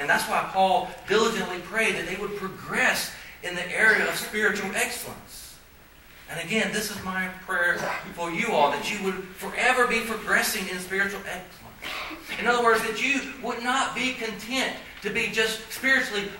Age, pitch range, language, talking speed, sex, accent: 40-59, 185-230 Hz, English, 170 wpm, male, American